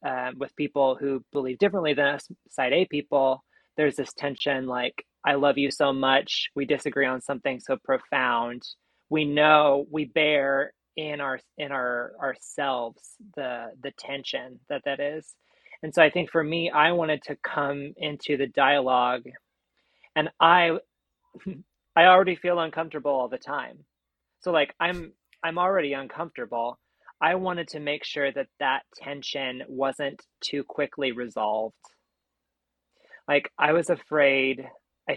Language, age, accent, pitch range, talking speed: English, 20-39, American, 135-155 Hz, 145 wpm